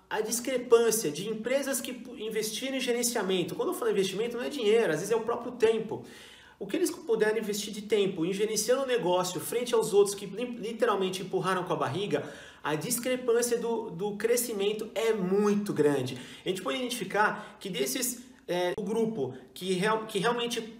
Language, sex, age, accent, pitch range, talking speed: Portuguese, male, 30-49, Brazilian, 180-235 Hz, 180 wpm